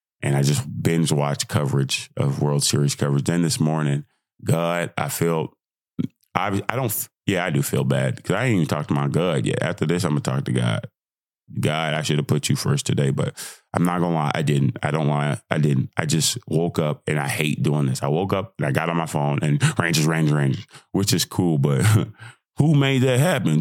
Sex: male